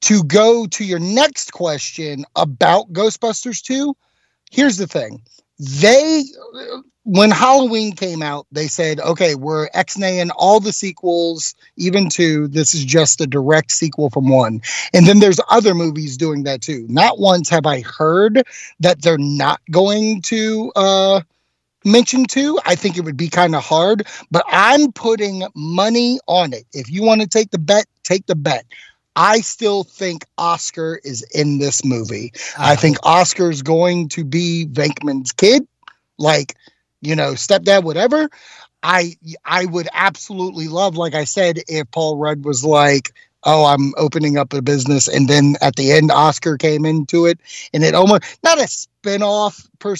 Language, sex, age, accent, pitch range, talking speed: English, male, 30-49, American, 145-195 Hz, 165 wpm